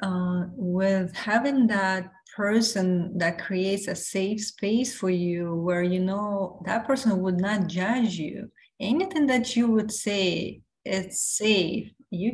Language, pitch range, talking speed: English, 180-210 Hz, 140 wpm